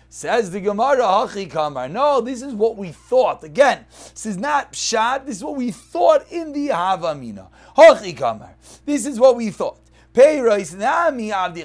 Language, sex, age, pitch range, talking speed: English, male, 30-49, 175-270 Hz, 170 wpm